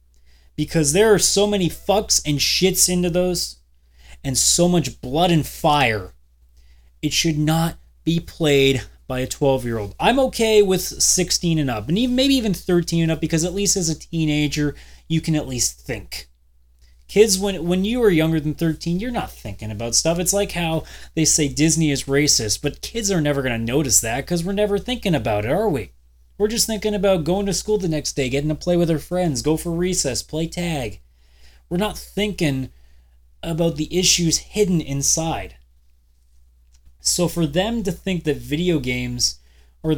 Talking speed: 185 wpm